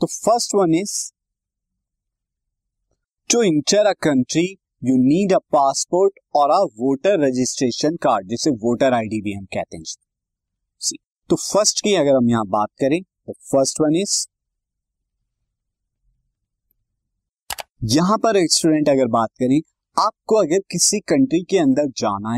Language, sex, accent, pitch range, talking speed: Hindi, male, native, 125-190 Hz, 135 wpm